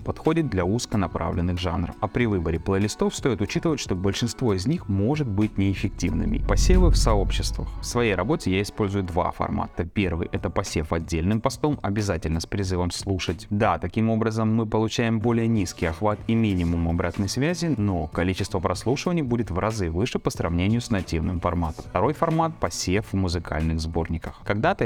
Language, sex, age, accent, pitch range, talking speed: Russian, male, 20-39, native, 90-120 Hz, 160 wpm